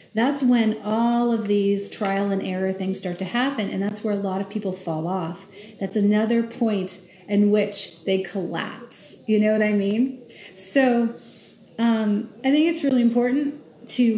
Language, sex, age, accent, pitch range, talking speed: English, female, 40-59, American, 190-235 Hz, 175 wpm